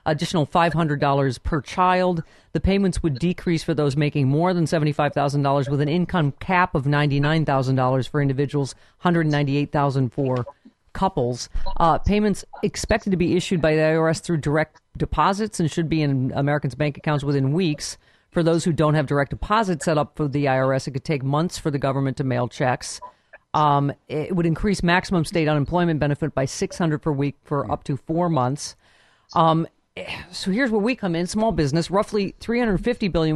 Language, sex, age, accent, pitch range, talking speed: English, female, 40-59, American, 145-180 Hz, 175 wpm